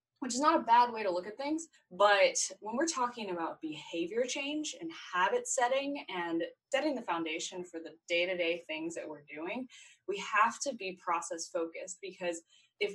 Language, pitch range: English, 175-240 Hz